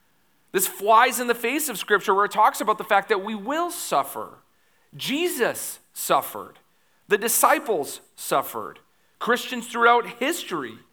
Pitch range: 145-210 Hz